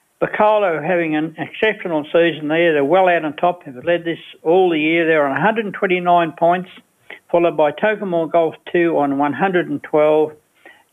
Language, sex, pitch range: English, male, 150-180 Hz